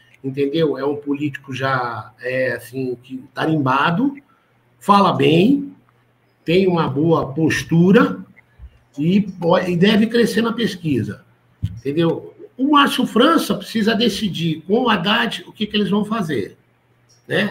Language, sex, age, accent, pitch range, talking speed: Portuguese, male, 50-69, Brazilian, 135-205 Hz, 130 wpm